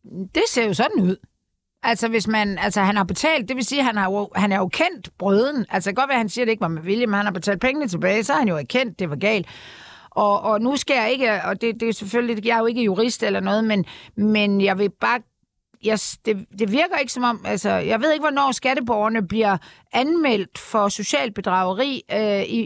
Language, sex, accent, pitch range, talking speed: Danish, female, native, 200-250 Hz, 235 wpm